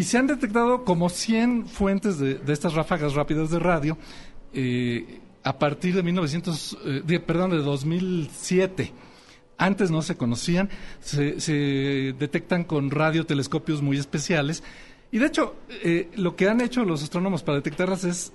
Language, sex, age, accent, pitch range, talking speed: Spanish, male, 40-59, Mexican, 145-185 Hz, 155 wpm